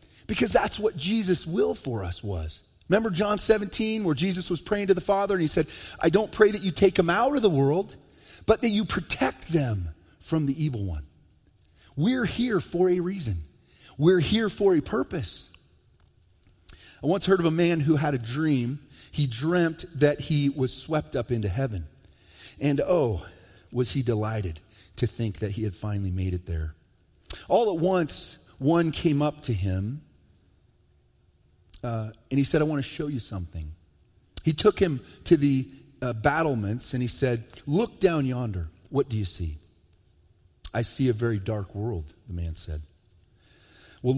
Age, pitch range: 40-59, 90-150 Hz